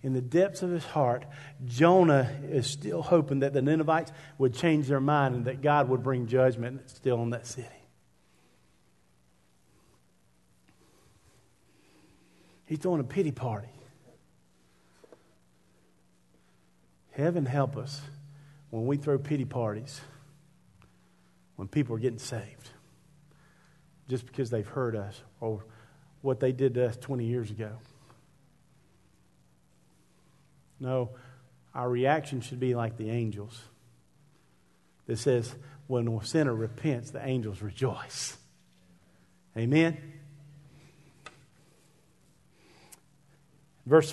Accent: American